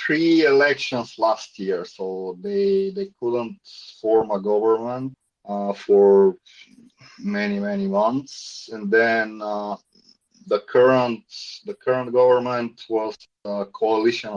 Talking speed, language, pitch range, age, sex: 115 wpm, English, 105-145 Hz, 30-49, male